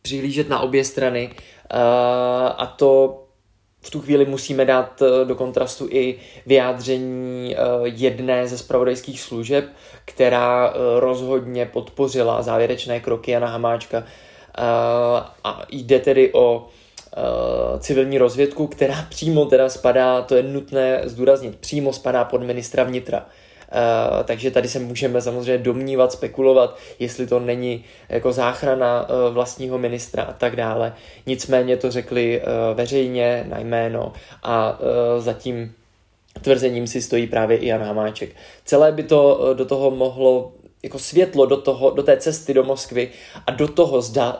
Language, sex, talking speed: Czech, male, 135 wpm